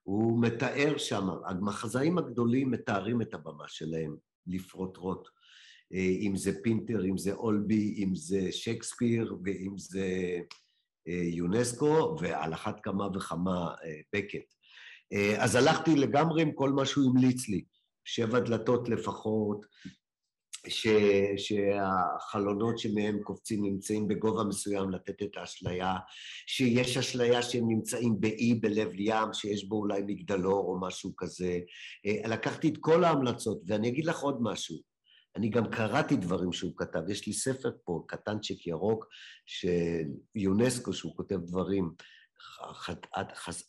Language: English